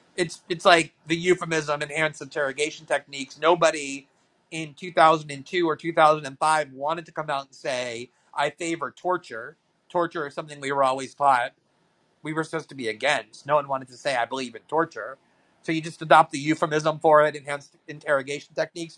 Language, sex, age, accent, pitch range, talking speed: English, male, 40-59, American, 145-170 Hz, 175 wpm